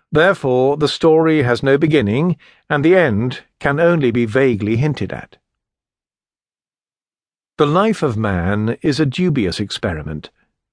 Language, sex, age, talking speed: English, male, 50-69, 130 wpm